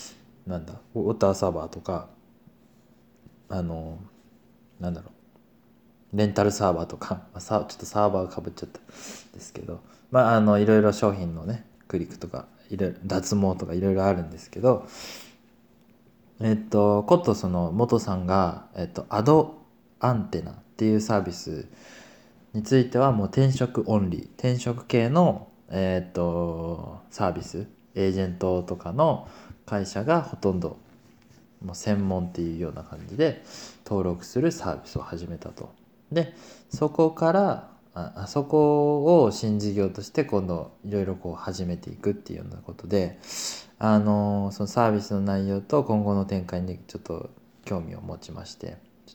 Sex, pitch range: male, 90-115 Hz